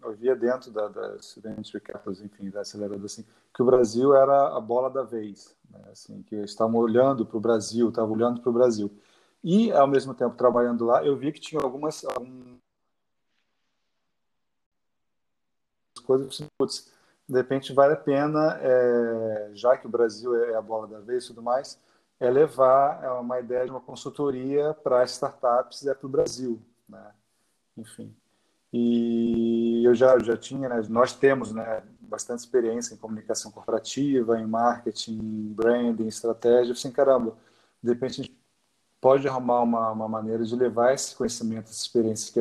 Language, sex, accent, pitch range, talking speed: Portuguese, male, Brazilian, 110-130 Hz, 165 wpm